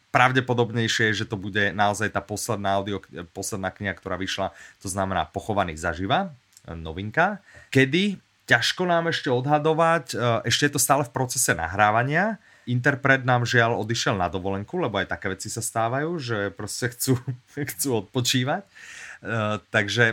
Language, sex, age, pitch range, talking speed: Slovak, male, 30-49, 95-125 Hz, 145 wpm